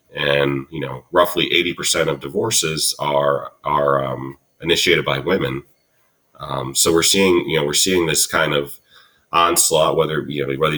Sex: male